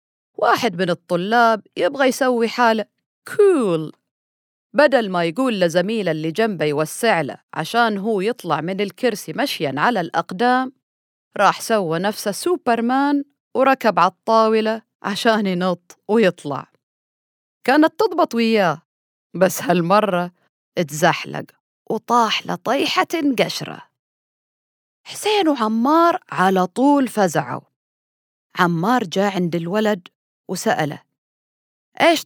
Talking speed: 95 wpm